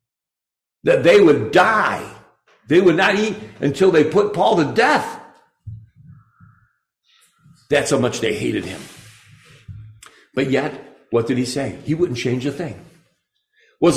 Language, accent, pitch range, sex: English, American, 115-175 Hz, male